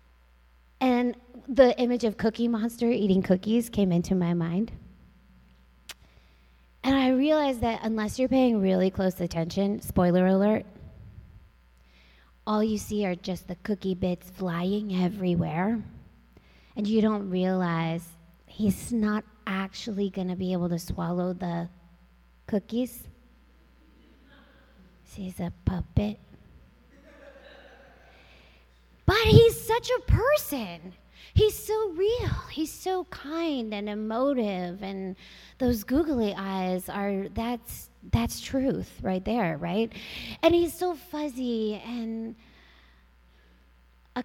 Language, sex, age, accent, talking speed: English, female, 20-39, American, 110 wpm